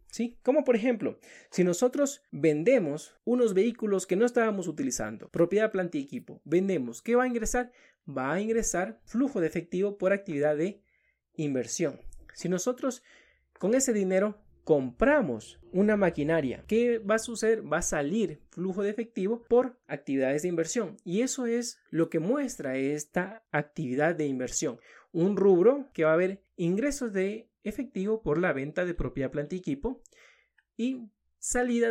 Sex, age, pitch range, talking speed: male, 30-49, 165-235 Hz, 155 wpm